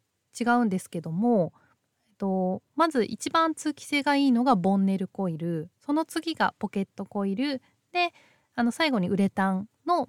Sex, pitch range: female, 185-260 Hz